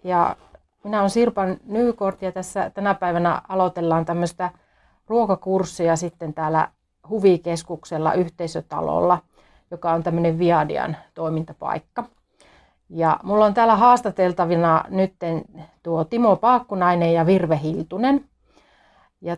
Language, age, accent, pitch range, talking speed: Finnish, 30-49, native, 165-200 Hz, 105 wpm